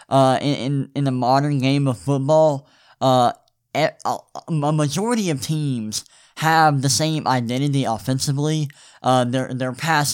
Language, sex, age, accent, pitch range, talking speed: English, male, 10-29, American, 125-150 Hz, 135 wpm